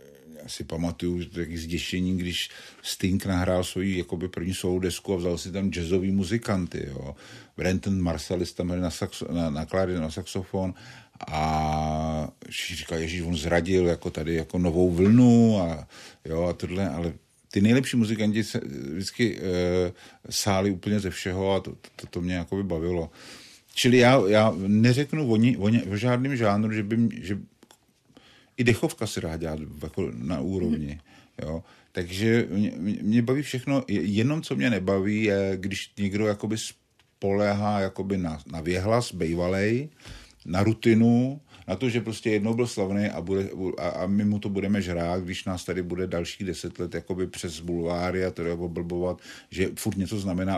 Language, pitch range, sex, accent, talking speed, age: Czech, 90-110 Hz, male, native, 160 wpm, 50-69